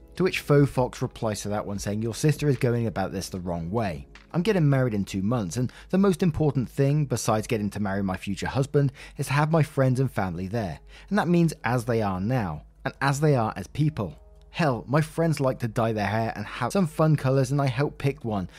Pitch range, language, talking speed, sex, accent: 105-145 Hz, English, 240 wpm, male, British